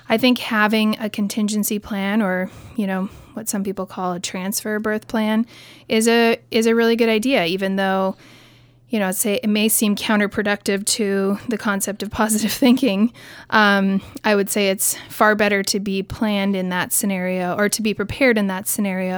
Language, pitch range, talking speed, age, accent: English, 190-220 Hz, 185 wpm, 30-49, American